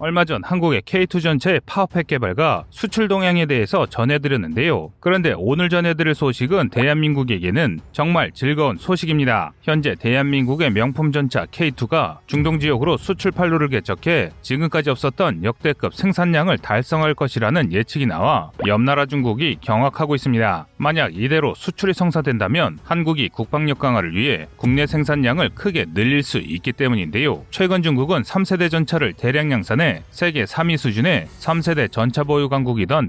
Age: 30-49